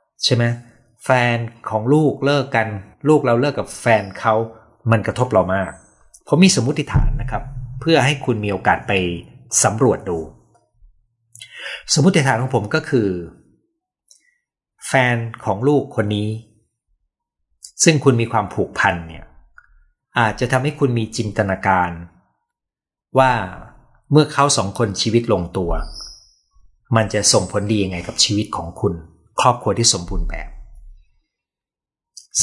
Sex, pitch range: male, 95-130 Hz